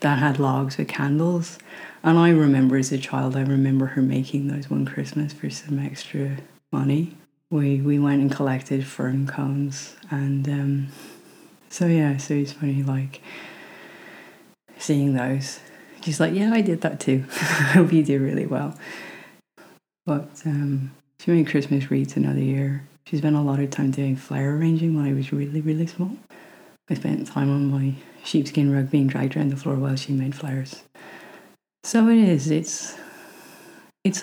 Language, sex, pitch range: English, female, 135-165 Hz